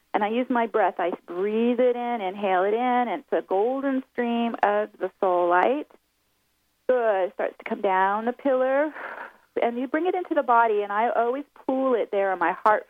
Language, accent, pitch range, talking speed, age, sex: English, American, 200-260 Hz, 210 wpm, 40-59, female